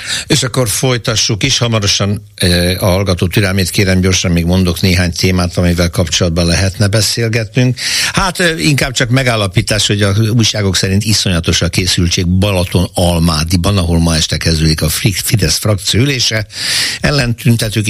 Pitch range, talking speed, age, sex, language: 90-110 Hz, 135 wpm, 60-79, male, Hungarian